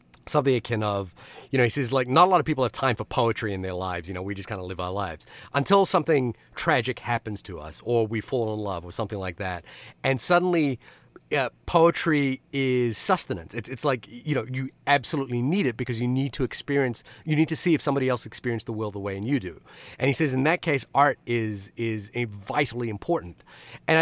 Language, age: English, 30-49